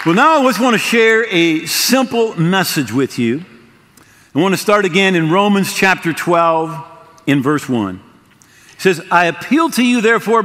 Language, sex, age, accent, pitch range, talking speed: English, male, 50-69, American, 165-220 Hz, 180 wpm